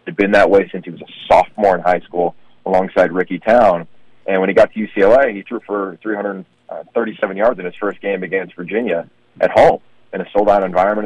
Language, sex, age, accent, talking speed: English, male, 40-59, American, 210 wpm